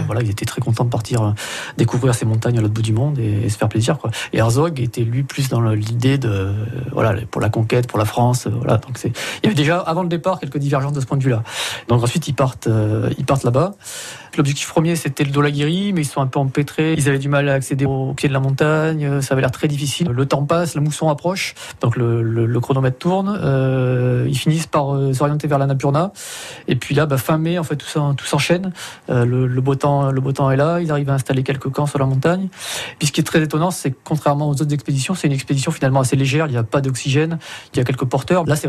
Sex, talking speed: male, 265 wpm